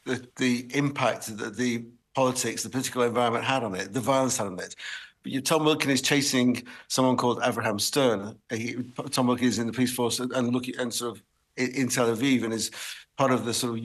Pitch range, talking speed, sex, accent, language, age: 115-130 Hz, 225 wpm, male, British, English, 50-69